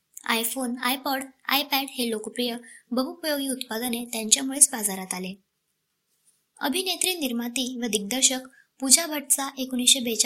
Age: 20-39